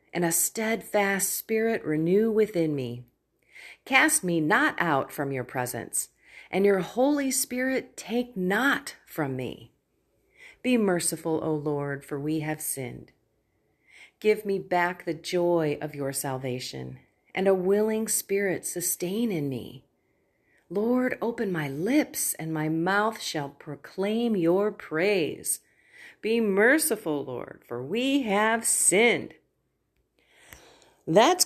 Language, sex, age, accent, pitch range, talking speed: English, female, 40-59, American, 160-220 Hz, 120 wpm